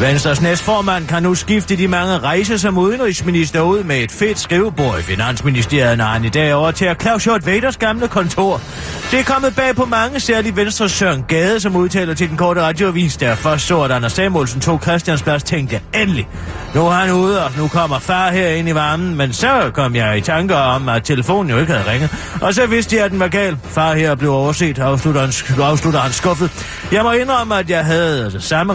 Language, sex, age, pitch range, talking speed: Danish, male, 30-49, 145-195 Hz, 215 wpm